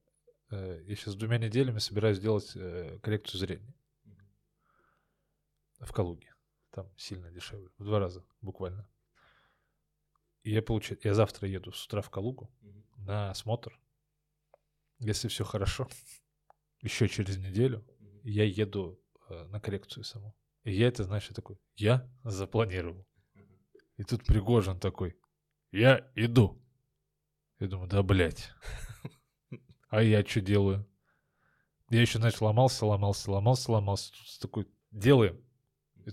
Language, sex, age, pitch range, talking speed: Russian, male, 20-39, 100-125 Hz, 120 wpm